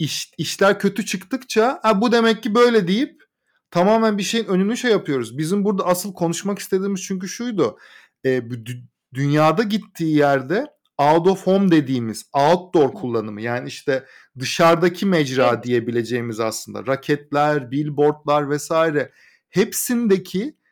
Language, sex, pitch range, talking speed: Turkish, male, 145-200 Hz, 125 wpm